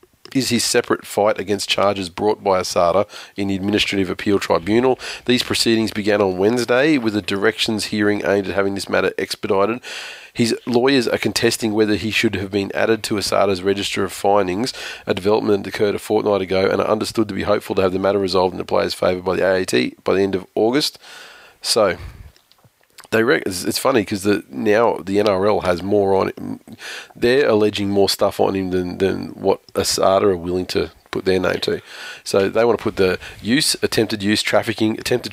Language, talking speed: English, 195 wpm